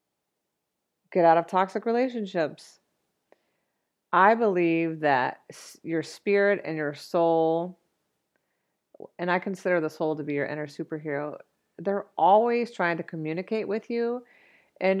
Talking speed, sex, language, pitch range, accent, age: 125 wpm, female, English, 165-210 Hz, American, 40-59